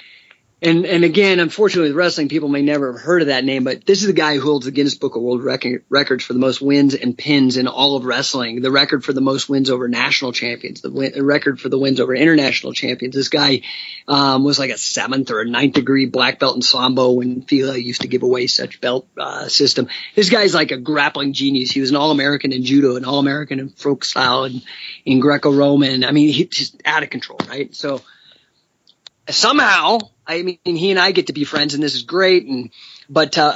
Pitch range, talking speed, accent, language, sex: 135-165 Hz, 235 wpm, American, English, male